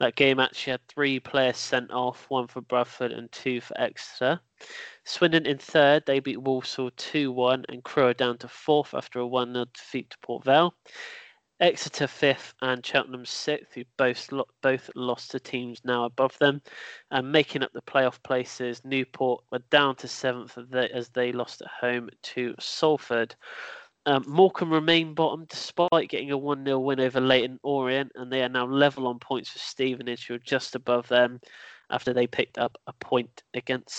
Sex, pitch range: male, 125-145 Hz